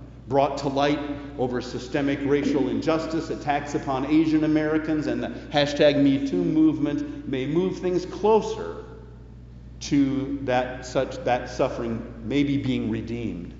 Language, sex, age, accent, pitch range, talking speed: English, male, 50-69, American, 110-150 Hz, 120 wpm